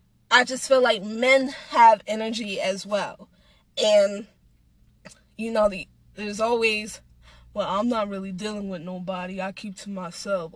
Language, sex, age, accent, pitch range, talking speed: English, female, 10-29, American, 185-245 Hz, 150 wpm